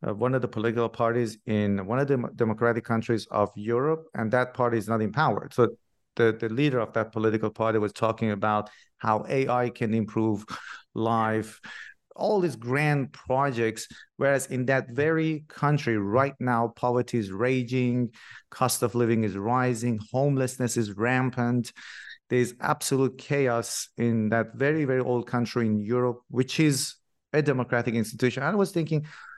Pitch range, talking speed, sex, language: 115-135 Hz, 155 wpm, male, English